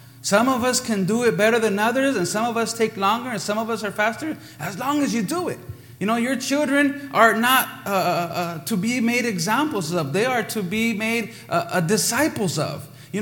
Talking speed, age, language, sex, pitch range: 225 wpm, 30-49, English, male, 150-240 Hz